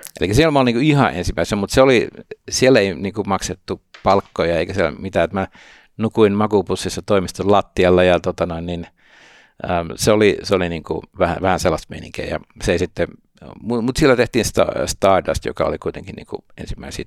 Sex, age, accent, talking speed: male, 60-79, native, 175 wpm